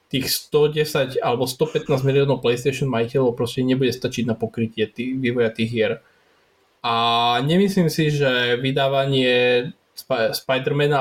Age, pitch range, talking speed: 20-39, 125-150 Hz, 125 wpm